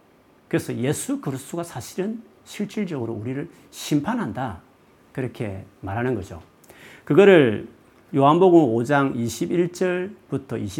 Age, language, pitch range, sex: 40-59, Korean, 105-160 Hz, male